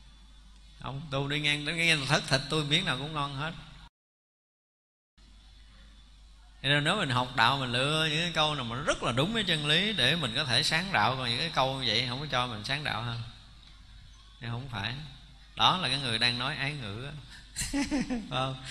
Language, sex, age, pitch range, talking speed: Vietnamese, male, 20-39, 125-170 Hz, 200 wpm